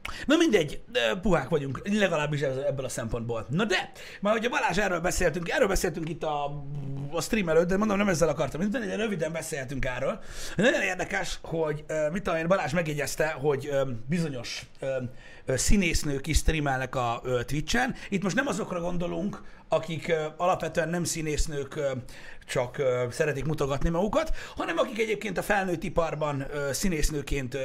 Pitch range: 140-195 Hz